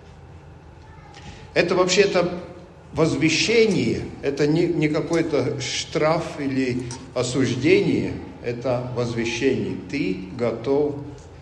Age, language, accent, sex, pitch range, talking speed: 50-69, Russian, native, male, 110-150 Hz, 75 wpm